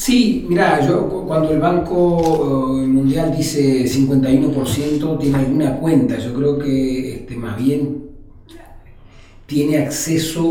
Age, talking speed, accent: 40-59, 120 wpm, Argentinian